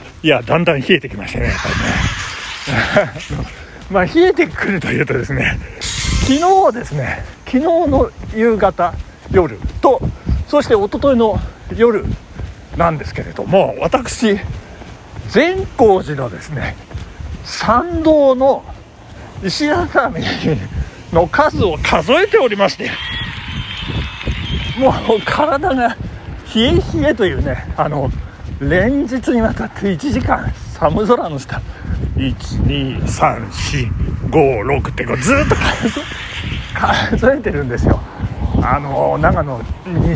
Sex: male